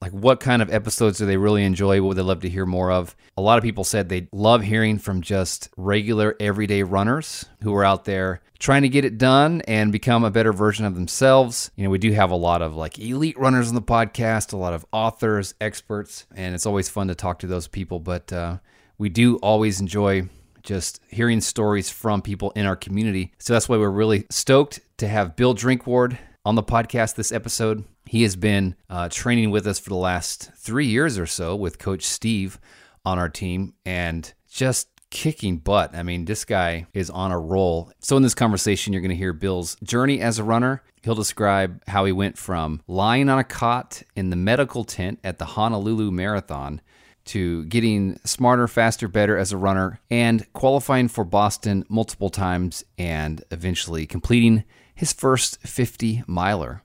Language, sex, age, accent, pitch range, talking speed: English, male, 30-49, American, 95-115 Hz, 200 wpm